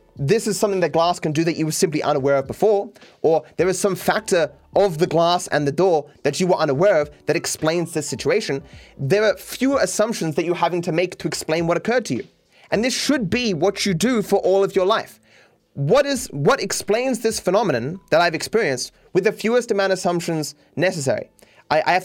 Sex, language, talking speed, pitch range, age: male, English, 220 wpm, 160-205 Hz, 20-39